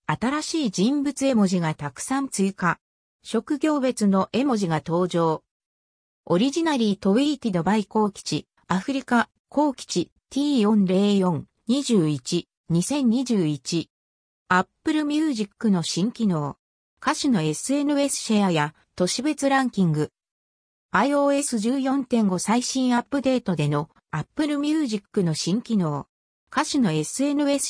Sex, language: female, Japanese